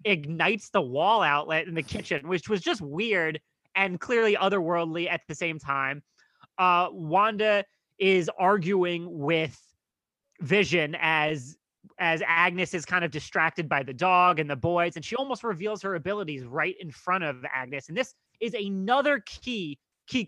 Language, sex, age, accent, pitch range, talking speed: English, male, 30-49, American, 160-200 Hz, 160 wpm